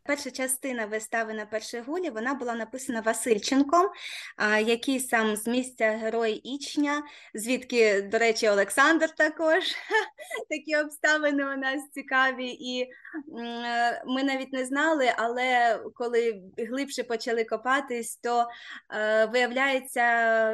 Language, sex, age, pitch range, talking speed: Ukrainian, female, 20-39, 235-295 Hz, 110 wpm